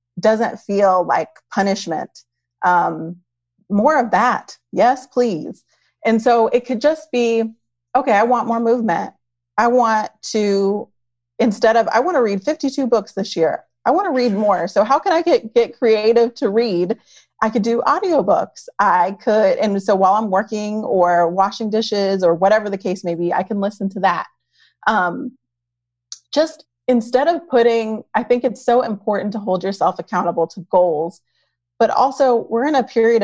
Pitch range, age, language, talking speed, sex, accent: 175-230 Hz, 30-49, English, 175 wpm, female, American